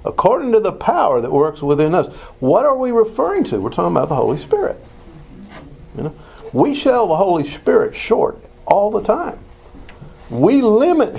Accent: American